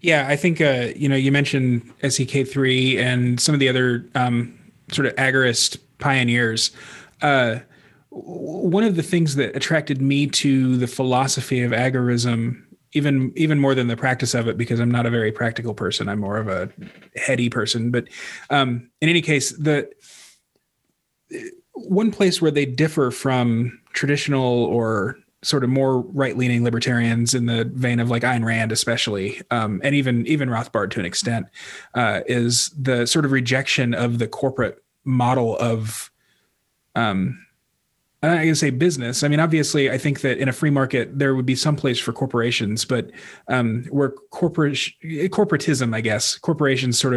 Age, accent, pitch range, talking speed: 30-49, American, 120-145 Hz, 165 wpm